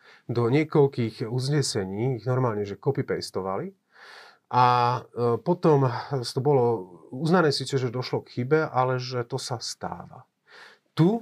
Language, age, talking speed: Slovak, 30-49, 125 wpm